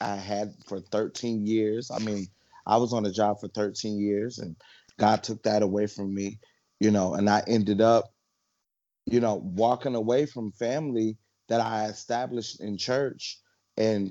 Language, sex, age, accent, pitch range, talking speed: English, male, 30-49, American, 100-120 Hz, 170 wpm